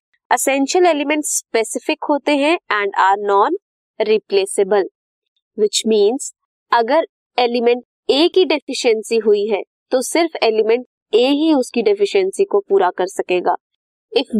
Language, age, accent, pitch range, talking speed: English, 20-39, Indian, 225-340 Hz, 120 wpm